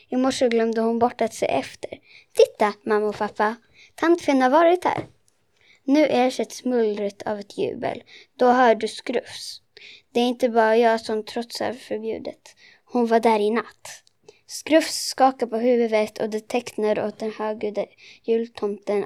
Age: 20-39